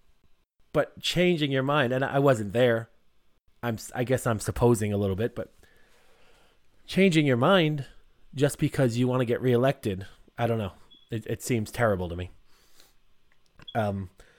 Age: 30-49